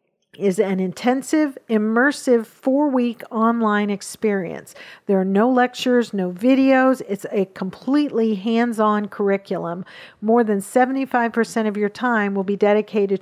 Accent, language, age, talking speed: American, English, 50-69, 125 wpm